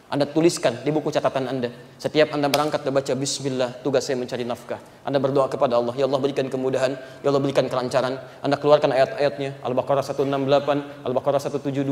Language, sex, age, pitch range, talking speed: Indonesian, male, 30-49, 140-195 Hz, 170 wpm